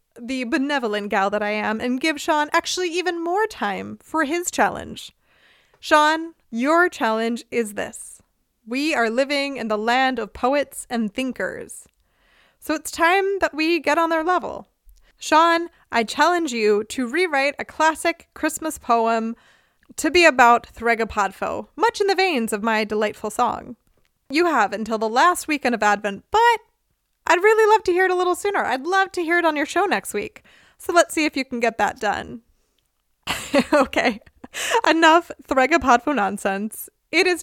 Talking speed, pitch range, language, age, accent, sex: 170 wpm, 225-315 Hz, English, 20-39, American, female